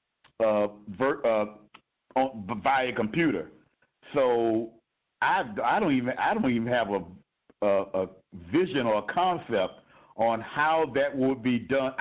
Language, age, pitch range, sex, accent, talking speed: English, 50-69, 110-150 Hz, male, American, 130 wpm